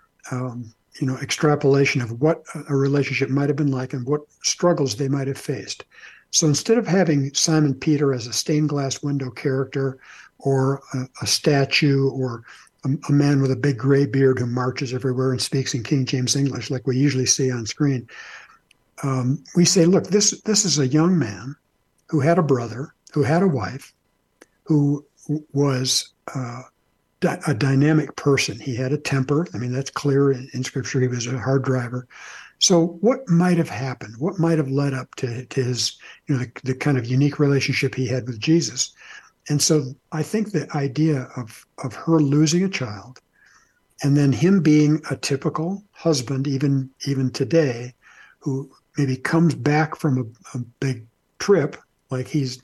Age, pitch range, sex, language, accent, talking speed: 60-79, 130-150 Hz, male, English, American, 175 wpm